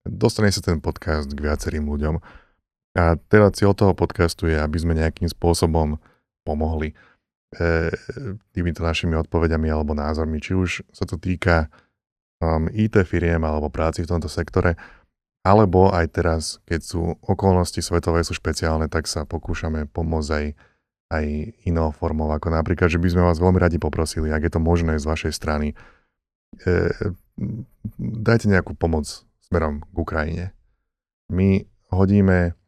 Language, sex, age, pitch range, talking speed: Slovak, male, 30-49, 80-90 Hz, 140 wpm